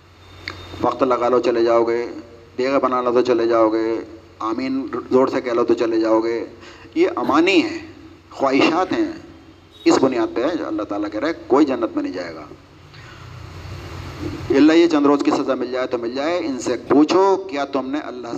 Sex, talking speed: male, 200 wpm